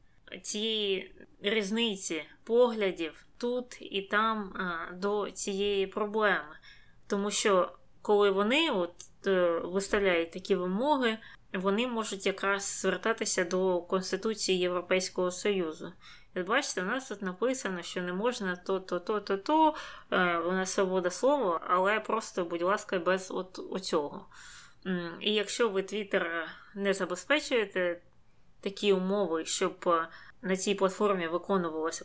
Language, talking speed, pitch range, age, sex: Ukrainian, 105 wpm, 180-215 Hz, 20-39, female